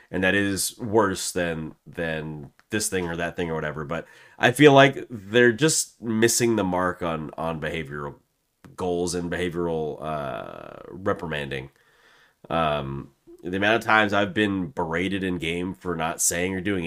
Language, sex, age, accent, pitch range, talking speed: English, male, 30-49, American, 85-115 Hz, 160 wpm